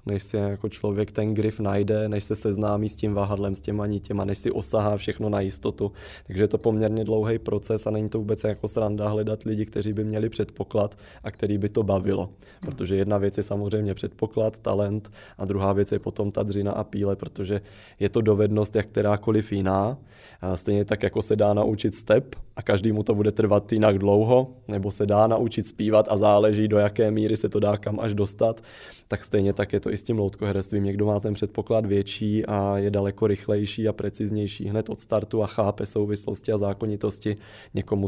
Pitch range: 100-110 Hz